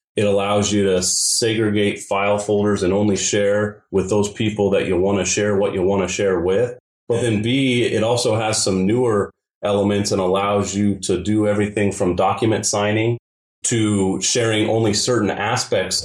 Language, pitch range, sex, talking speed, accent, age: English, 100-120 Hz, male, 175 wpm, American, 30-49